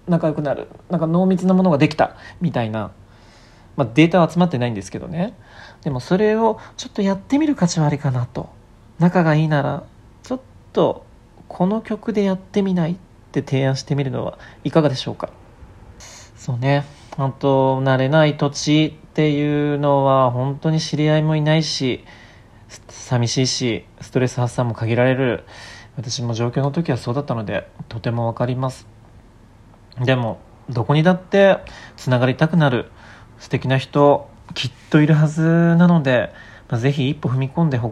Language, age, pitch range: Japanese, 40-59, 120-160 Hz